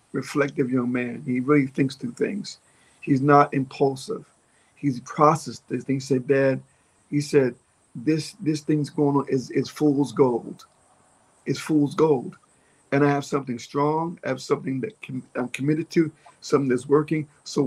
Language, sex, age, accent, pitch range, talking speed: English, male, 50-69, American, 130-150 Hz, 165 wpm